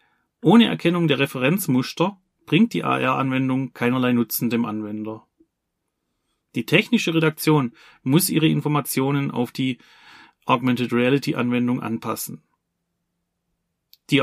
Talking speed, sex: 95 wpm, male